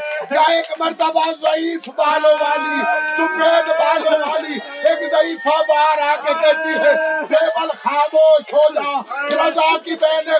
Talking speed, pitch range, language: 80 wpm, 255-310 Hz, Urdu